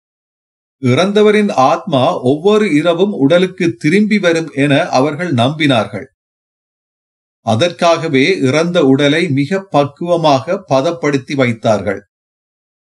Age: 40-59